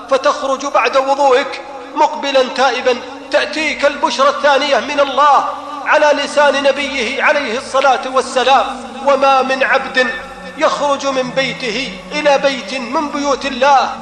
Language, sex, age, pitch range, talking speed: Arabic, male, 40-59, 245-280 Hz, 115 wpm